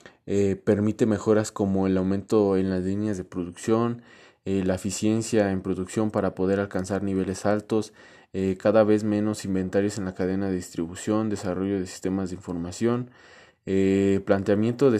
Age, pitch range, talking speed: 20-39, 95-110 Hz, 155 wpm